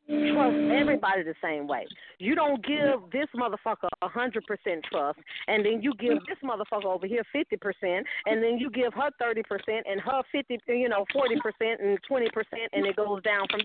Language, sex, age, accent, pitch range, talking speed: English, female, 40-59, American, 215-285 Hz, 175 wpm